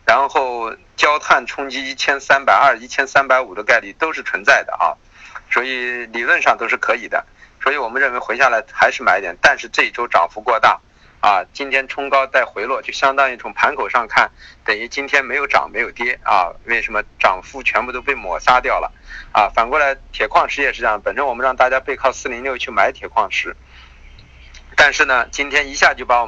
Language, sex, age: Chinese, male, 50-69